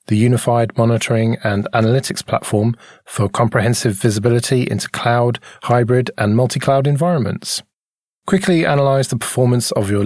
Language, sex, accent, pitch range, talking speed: English, male, British, 110-135 Hz, 125 wpm